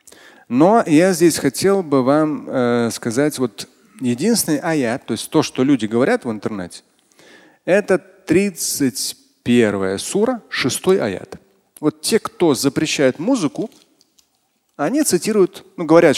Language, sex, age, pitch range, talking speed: Russian, male, 30-49, 125-180 Hz, 120 wpm